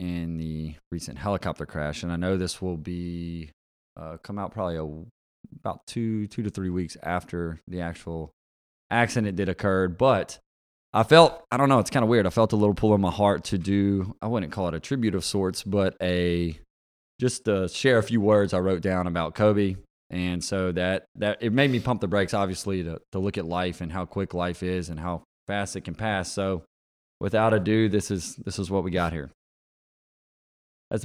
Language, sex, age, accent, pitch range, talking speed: English, male, 20-39, American, 85-105 Hz, 210 wpm